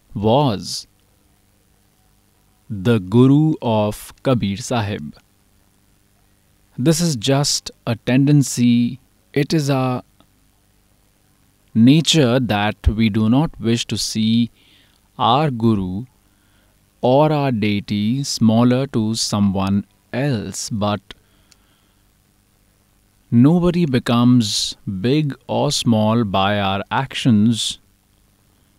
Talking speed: 85 wpm